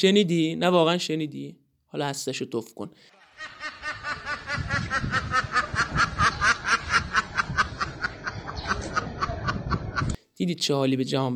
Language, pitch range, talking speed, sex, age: Persian, 140-190 Hz, 70 wpm, male, 30-49